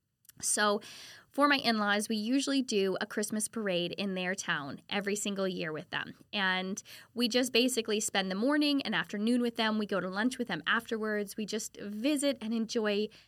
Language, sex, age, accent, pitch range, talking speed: English, female, 10-29, American, 205-255 Hz, 185 wpm